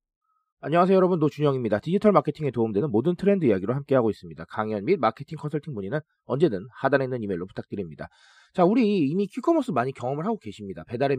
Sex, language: male, Korean